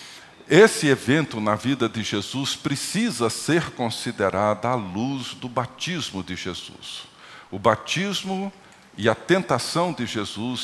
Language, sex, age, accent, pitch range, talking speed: Portuguese, male, 50-69, Brazilian, 110-160 Hz, 125 wpm